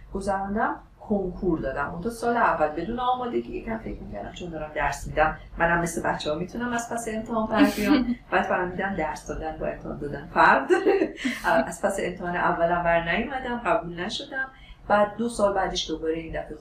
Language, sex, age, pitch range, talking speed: Persian, female, 40-59, 165-230 Hz, 175 wpm